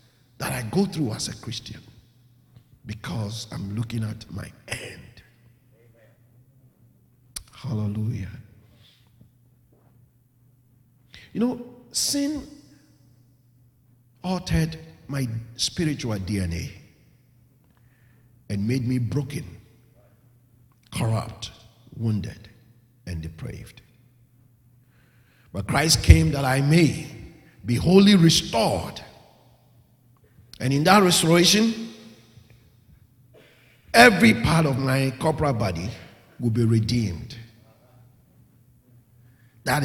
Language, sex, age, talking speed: English, male, 50-69, 80 wpm